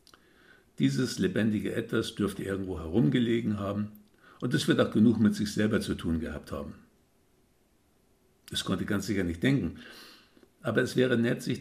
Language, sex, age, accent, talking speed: German, male, 60-79, German, 155 wpm